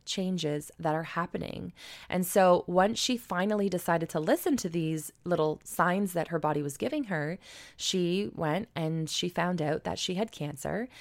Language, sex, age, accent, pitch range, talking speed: English, female, 20-39, American, 160-215 Hz, 175 wpm